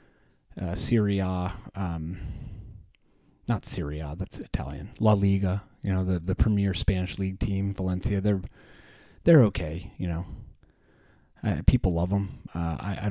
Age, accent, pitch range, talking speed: 30-49, American, 90-105 Hz, 135 wpm